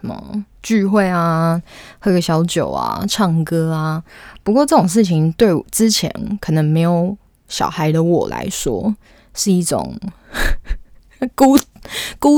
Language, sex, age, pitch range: Chinese, female, 20-39, 170-220 Hz